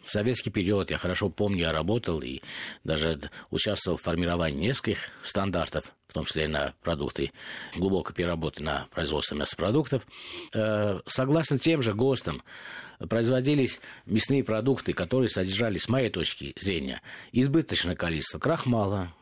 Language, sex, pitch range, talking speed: Russian, male, 95-125 Hz, 130 wpm